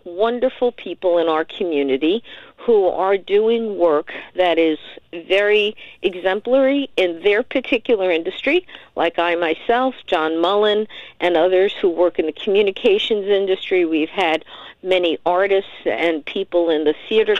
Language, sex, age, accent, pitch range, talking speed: English, female, 50-69, American, 165-225 Hz, 135 wpm